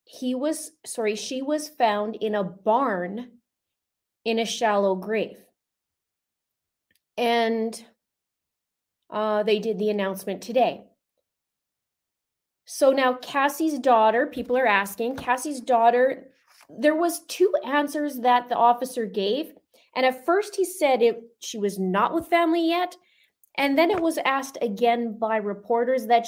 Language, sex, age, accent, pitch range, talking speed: English, female, 30-49, American, 215-265 Hz, 130 wpm